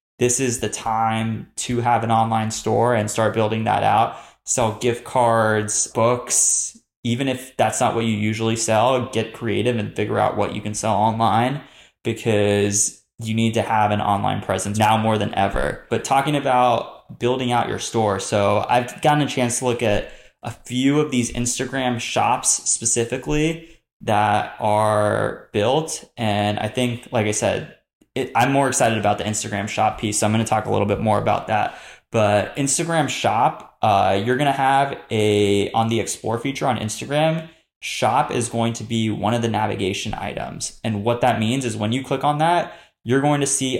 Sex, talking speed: male, 190 wpm